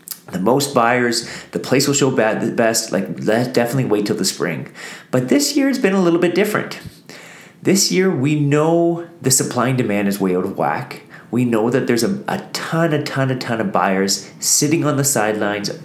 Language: English